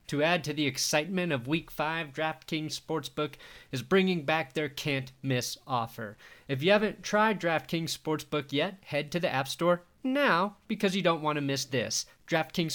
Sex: male